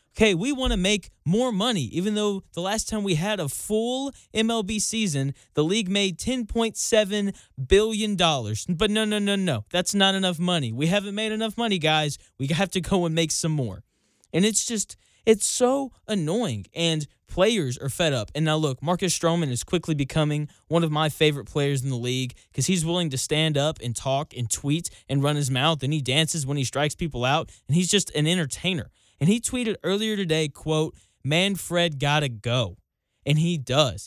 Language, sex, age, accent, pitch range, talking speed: English, male, 20-39, American, 140-200 Hz, 195 wpm